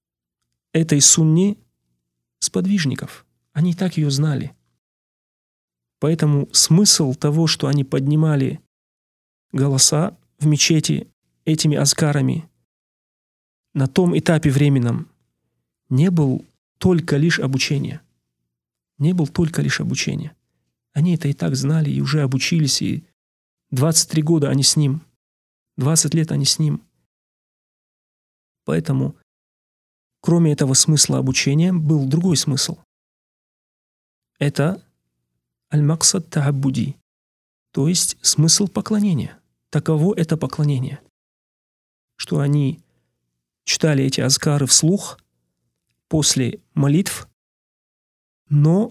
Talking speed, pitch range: 95 wpm, 125-160 Hz